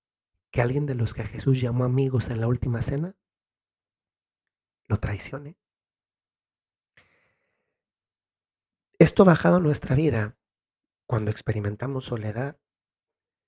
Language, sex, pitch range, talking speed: Spanish, male, 115-135 Hz, 105 wpm